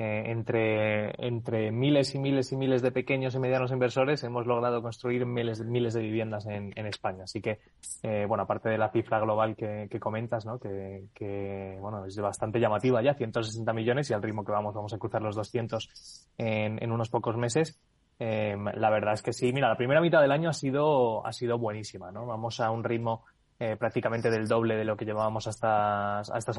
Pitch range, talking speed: 110-120 Hz, 210 wpm